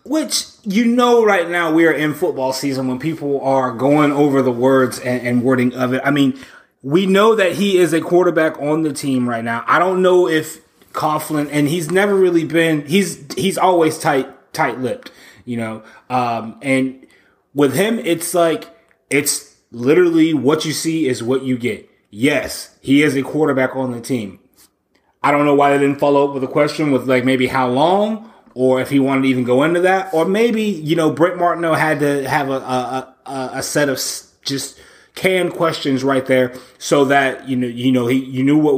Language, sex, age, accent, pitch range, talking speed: English, male, 30-49, American, 130-165 Hz, 205 wpm